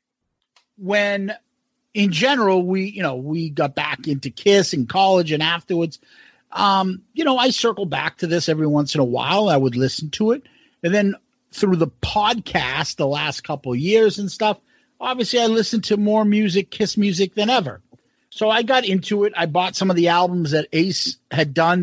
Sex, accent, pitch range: male, American, 160-220 Hz